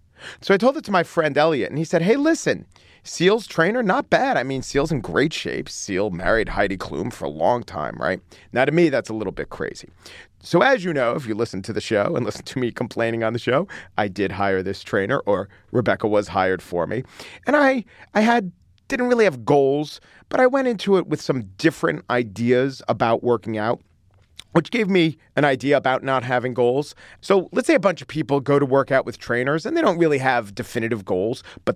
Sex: male